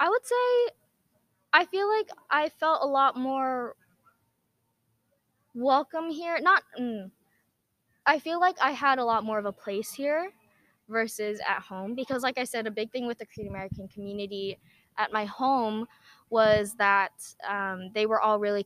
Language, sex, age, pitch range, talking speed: English, female, 10-29, 195-260 Hz, 165 wpm